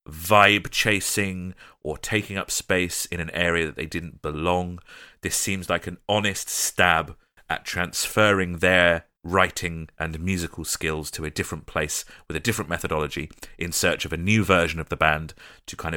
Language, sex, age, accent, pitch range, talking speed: English, male, 30-49, British, 85-105 Hz, 170 wpm